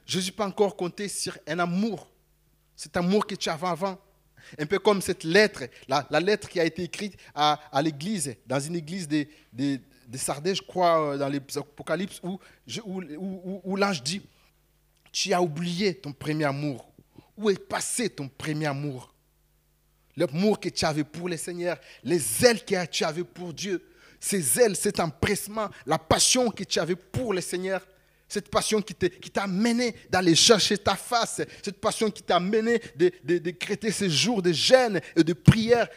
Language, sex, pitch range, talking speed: French, male, 165-220 Hz, 190 wpm